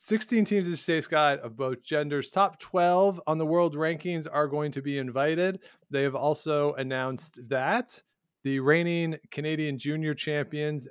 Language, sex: English, male